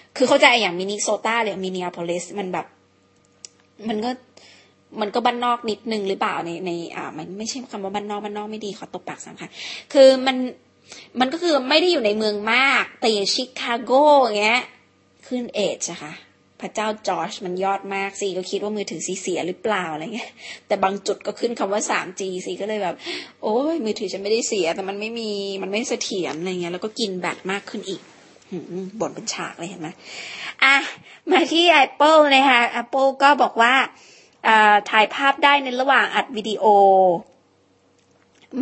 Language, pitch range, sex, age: Thai, 195-255 Hz, female, 20-39